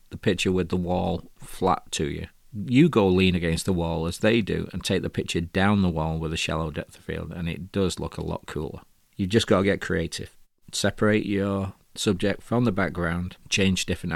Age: 40-59